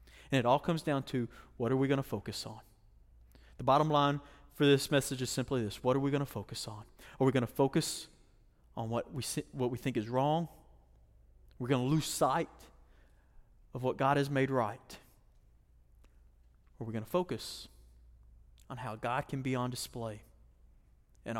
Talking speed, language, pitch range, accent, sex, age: 185 wpm, English, 105-145 Hz, American, male, 30-49